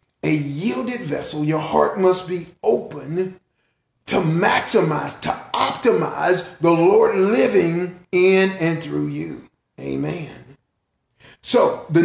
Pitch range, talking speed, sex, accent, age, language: 170-230 Hz, 110 wpm, male, American, 40-59, English